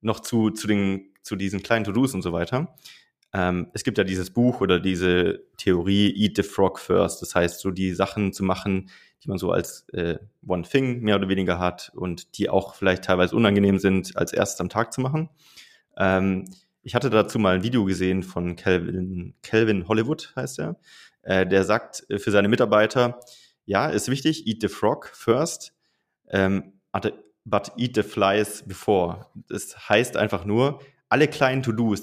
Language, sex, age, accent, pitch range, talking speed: German, male, 30-49, German, 95-115 Hz, 180 wpm